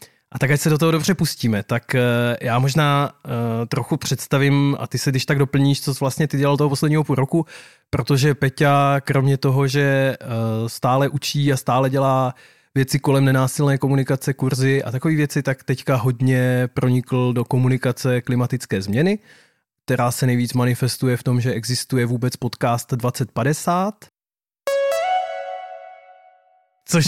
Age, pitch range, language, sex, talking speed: 20-39, 130-165 Hz, Czech, male, 145 wpm